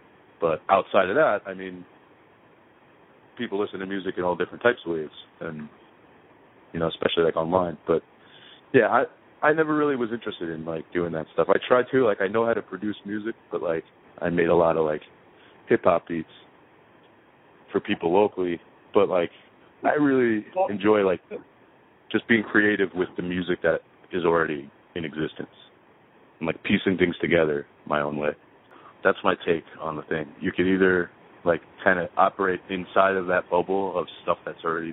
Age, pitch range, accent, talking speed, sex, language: 30-49, 80-105 Hz, American, 180 wpm, male, English